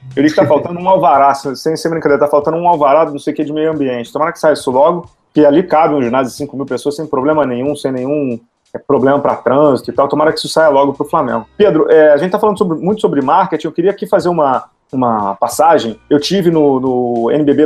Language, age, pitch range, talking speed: Portuguese, 30-49, 135-170 Hz, 240 wpm